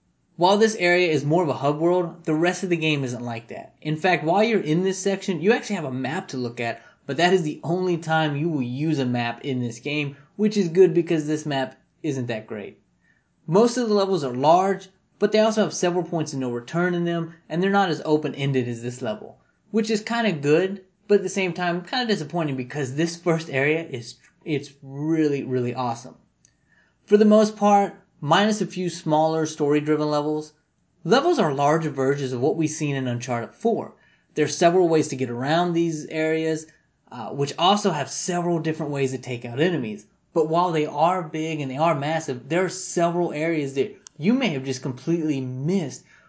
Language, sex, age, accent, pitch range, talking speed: English, male, 20-39, American, 140-180 Hz, 210 wpm